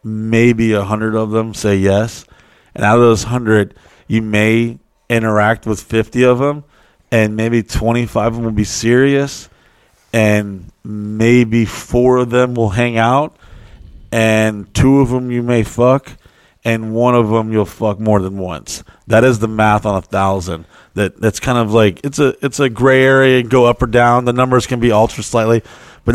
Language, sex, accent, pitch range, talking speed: English, male, American, 110-140 Hz, 185 wpm